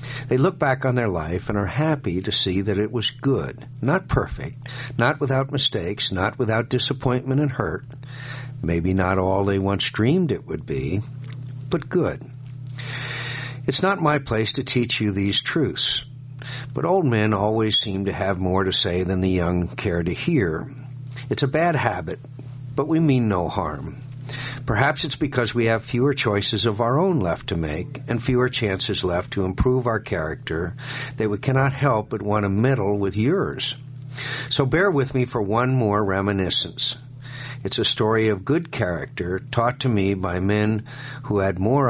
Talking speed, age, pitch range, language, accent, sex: 175 wpm, 60-79, 100-135 Hz, English, American, male